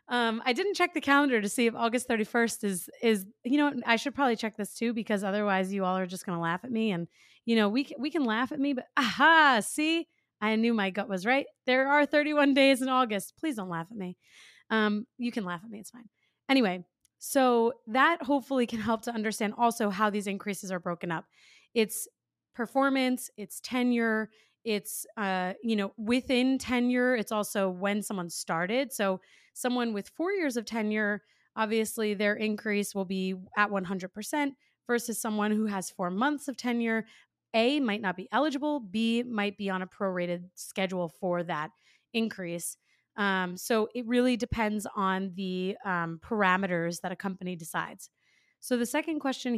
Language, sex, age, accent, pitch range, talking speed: English, female, 30-49, American, 195-250 Hz, 185 wpm